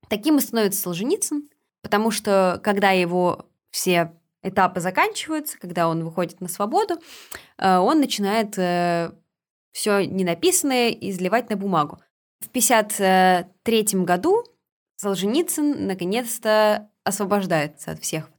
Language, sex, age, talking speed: Russian, female, 20-39, 100 wpm